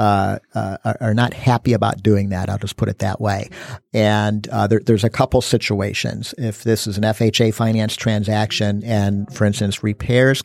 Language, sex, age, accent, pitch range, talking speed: English, male, 50-69, American, 100-115 Hz, 185 wpm